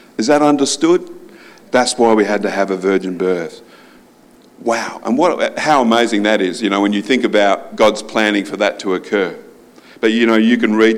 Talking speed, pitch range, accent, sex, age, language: 200 wpm, 105-125 Hz, Australian, male, 50-69, English